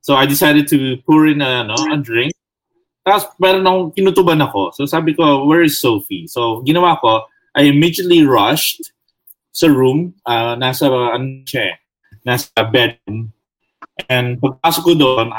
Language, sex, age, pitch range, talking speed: English, male, 20-39, 115-155 Hz, 150 wpm